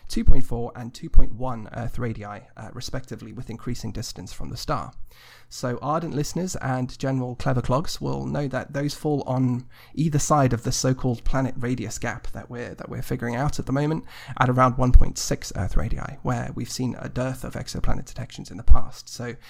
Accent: British